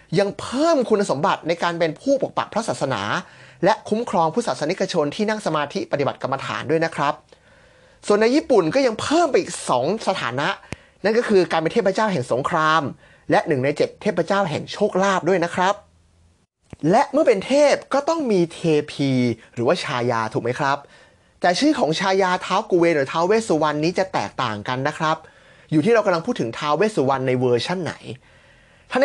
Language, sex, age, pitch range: Thai, male, 30-49, 140-195 Hz